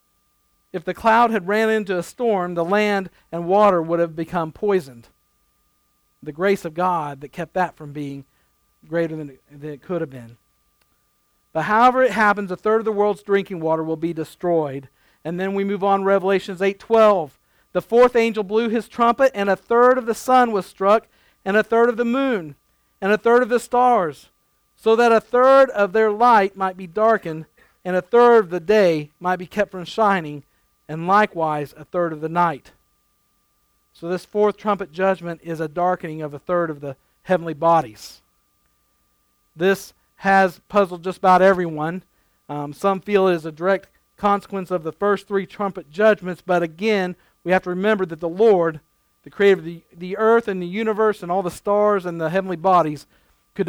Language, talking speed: English, 190 wpm